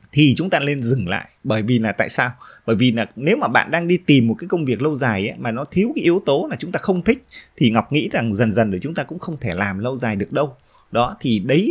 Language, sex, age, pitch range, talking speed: Vietnamese, male, 20-39, 110-170 Hz, 295 wpm